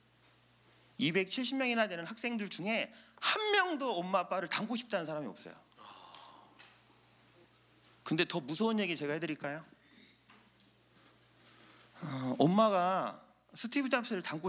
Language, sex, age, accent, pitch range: Korean, male, 40-59, native, 160-240 Hz